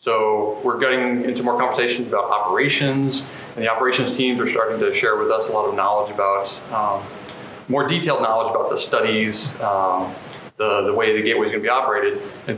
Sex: male